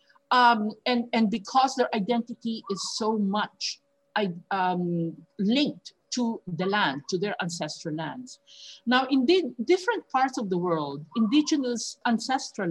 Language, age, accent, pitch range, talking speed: English, 50-69, Filipino, 175-240 Hz, 125 wpm